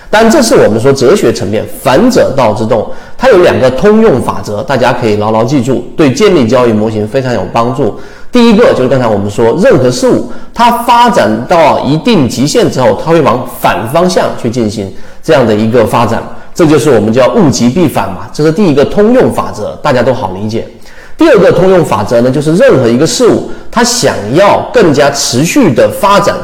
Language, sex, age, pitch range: Chinese, male, 30-49, 115-190 Hz